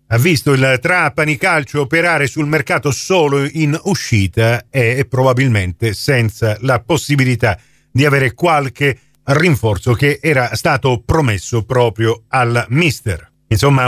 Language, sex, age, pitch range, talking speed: Italian, male, 40-59, 130-195 Hz, 120 wpm